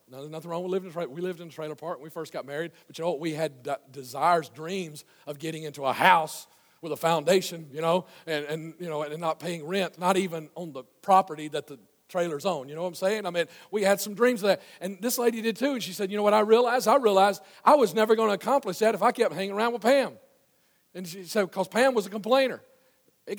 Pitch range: 175-255 Hz